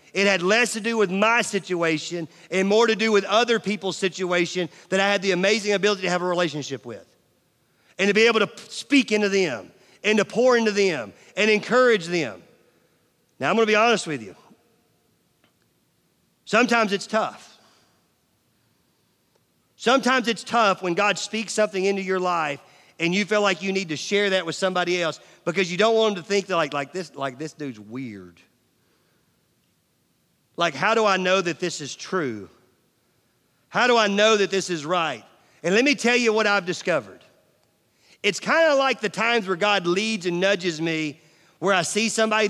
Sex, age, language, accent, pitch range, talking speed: male, 40-59, English, American, 170-215 Hz, 185 wpm